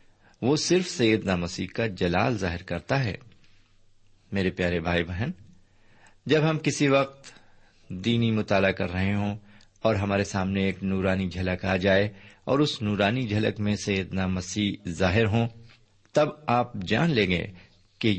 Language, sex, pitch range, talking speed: Urdu, male, 95-115 Hz, 150 wpm